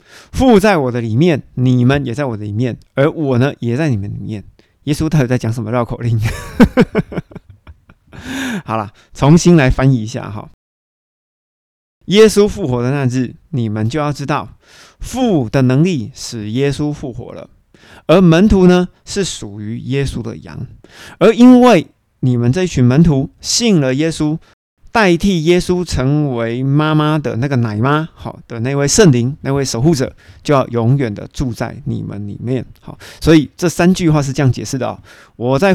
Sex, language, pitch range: male, Chinese, 115-155 Hz